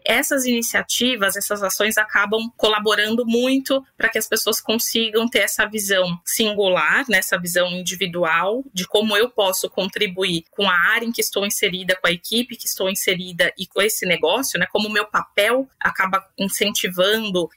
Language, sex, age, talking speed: Portuguese, female, 20-39, 165 wpm